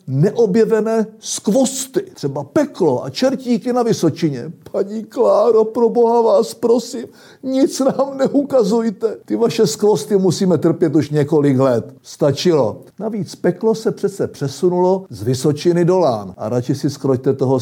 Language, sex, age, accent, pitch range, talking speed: Czech, male, 60-79, native, 140-205 Hz, 135 wpm